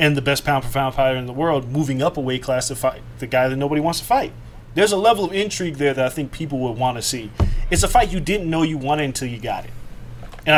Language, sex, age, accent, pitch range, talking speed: English, male, 30-49, American, 120-160 Hz, 285 wpm